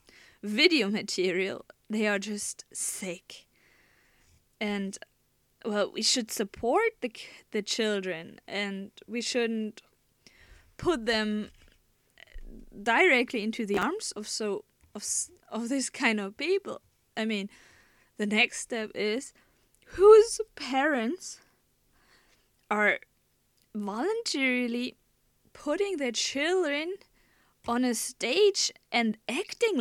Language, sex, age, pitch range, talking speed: English, female, 20-39, 205-260 Hz, 95 wpm